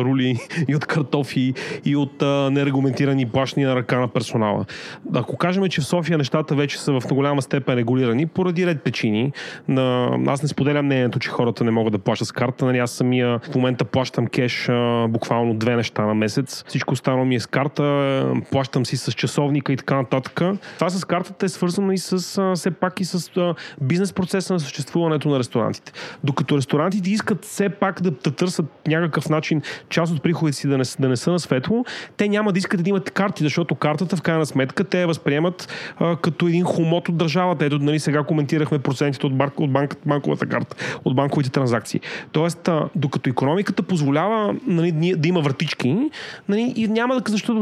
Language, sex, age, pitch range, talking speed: Bulgarian, male, 30-49, 135-180 Hz, 195 wpm